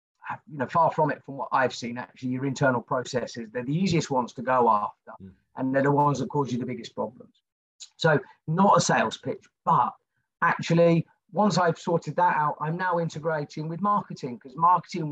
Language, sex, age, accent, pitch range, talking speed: English, male, 40-59, British, 140-175 Hz, 195 wpm